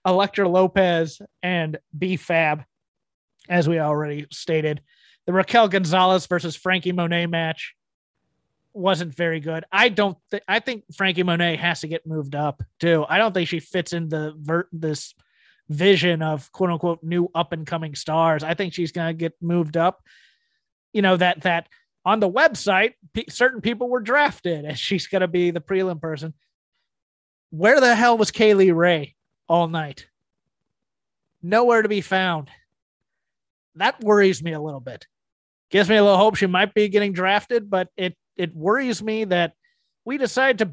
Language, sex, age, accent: English, male, 30-49, American